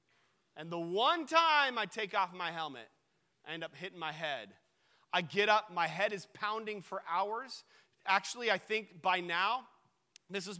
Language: English